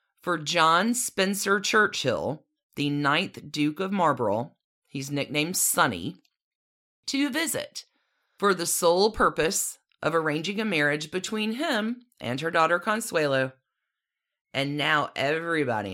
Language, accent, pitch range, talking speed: English, American, 150-230 Hz, 115 wpm